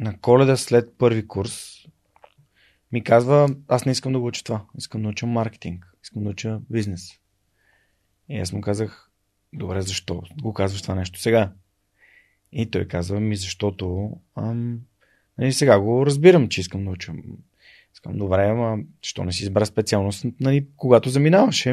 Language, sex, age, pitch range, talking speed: Bulgarian, male, 30-49, 100-120 Hz, 155 wpm